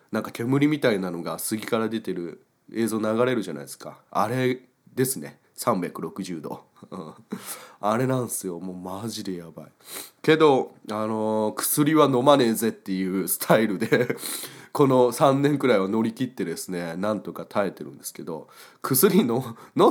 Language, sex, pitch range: Japanese, male, 95-130 Hz